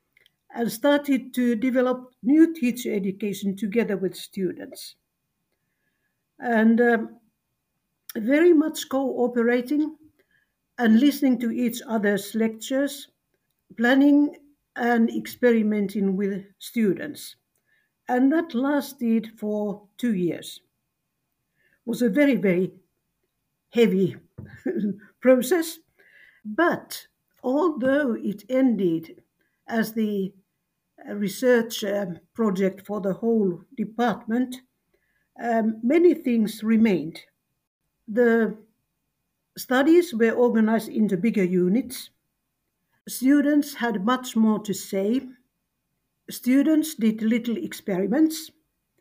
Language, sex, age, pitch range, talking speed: English, female, 60-79, 205-260 Hz, 85 wpm